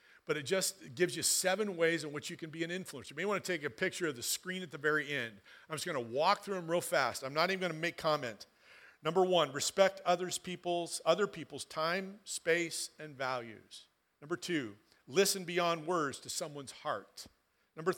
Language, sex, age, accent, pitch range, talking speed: English, male, 50-69, American, 135-180 Hz, 215 wpm